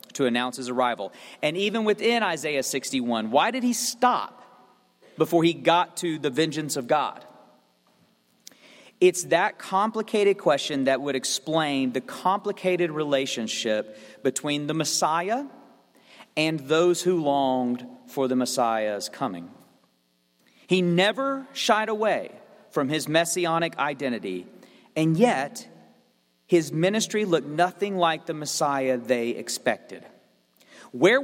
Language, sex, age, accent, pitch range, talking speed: English, male, 40-59, American, 135-210 Hz, 120 wpm